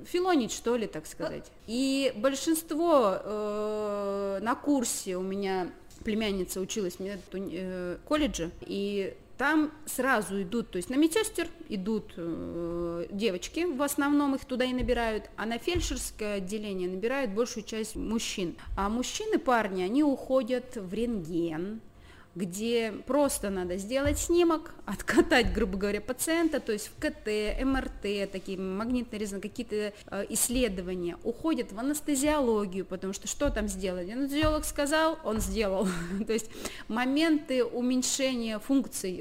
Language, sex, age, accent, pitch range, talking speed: Russian, female, 20-39, native, 195-265 Hz, 125 wpm